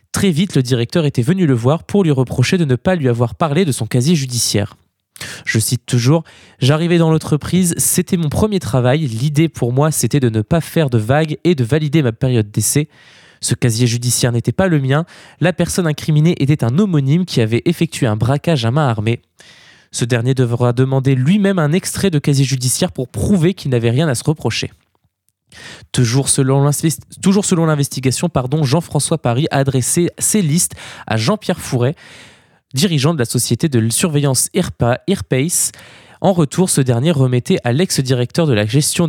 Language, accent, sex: French, French, male